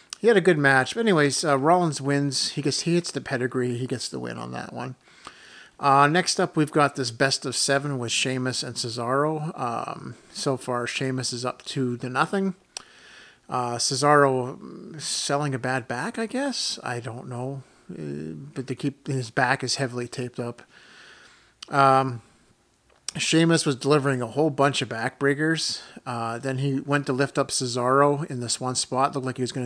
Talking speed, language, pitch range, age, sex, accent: 190 wpm, English, 125-150 Hz, 40-59, male, American